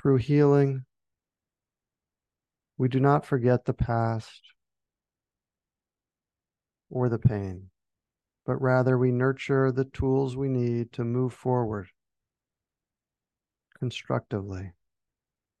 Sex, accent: male, American